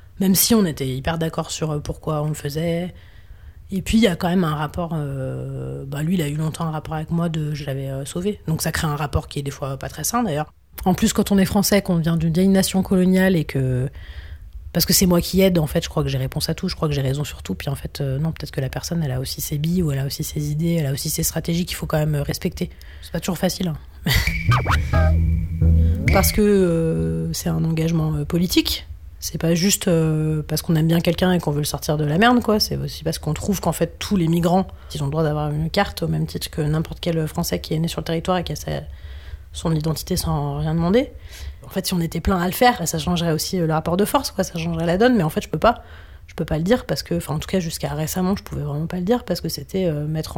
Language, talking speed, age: French, 280 wpm, 30-49